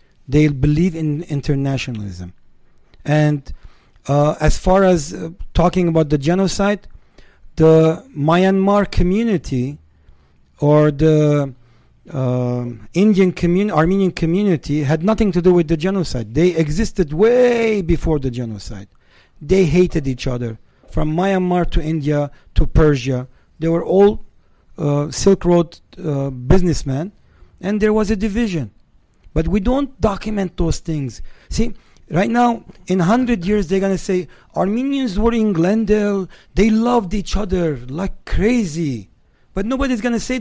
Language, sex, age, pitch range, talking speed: English, male, 40-59, 145-200 Hz, 135 wpm